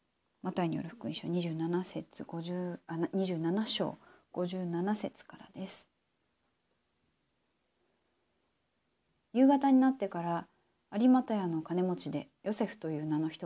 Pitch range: 165-210 Hz